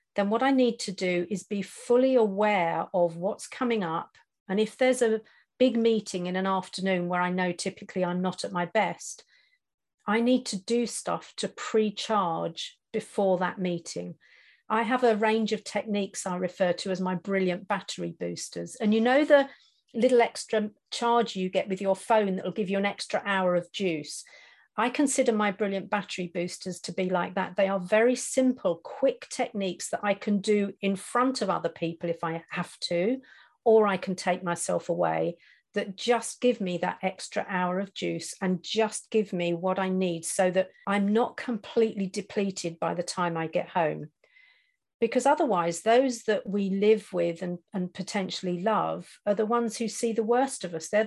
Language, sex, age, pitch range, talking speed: English, female, 50-69, 180-225 Hz, 190 wpm